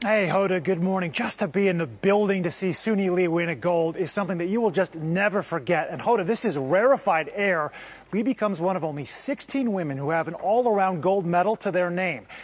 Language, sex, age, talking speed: English, male, 30-49, 225 wpm